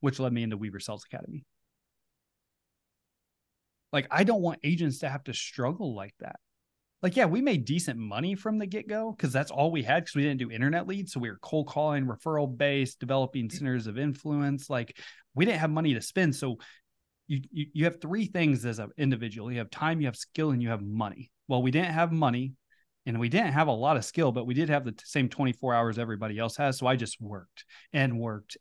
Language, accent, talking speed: English, American, 220 wpm